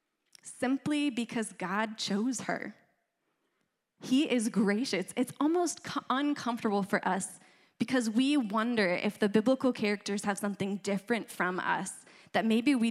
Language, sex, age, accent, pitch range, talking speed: English, female, 20-39, American, 190-230 Hz, 135 wpm